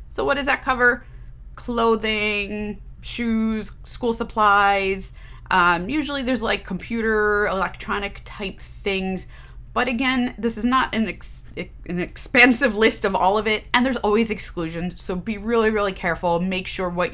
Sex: female